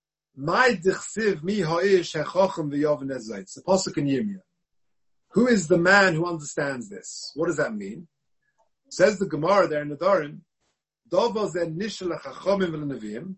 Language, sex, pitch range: English, male, 155-200 Hz